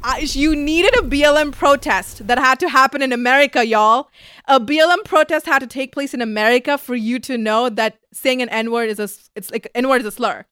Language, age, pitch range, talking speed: English, 20-39, 215-270 Hz, 220 wpm